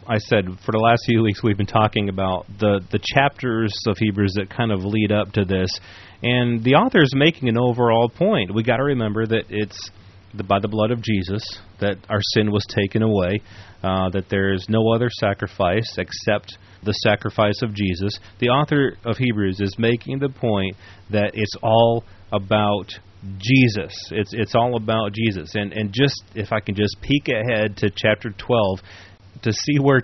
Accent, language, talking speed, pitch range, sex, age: American, English, 190 wpm, 100-120 Hz, male, 30-49